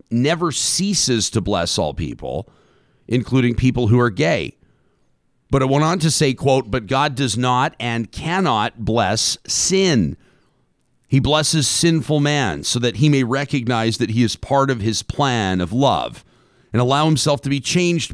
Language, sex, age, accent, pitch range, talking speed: English, male, 50-69, American, 105-140 Hz, 165 wpm